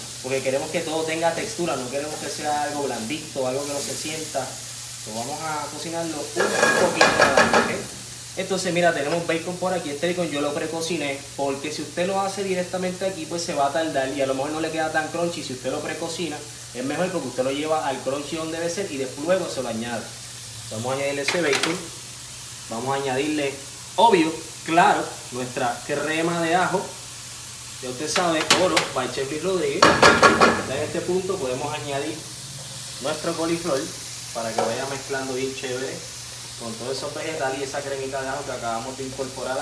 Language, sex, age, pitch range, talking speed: Spanish, male, 20-39, 125-160 Hz, 185 wpm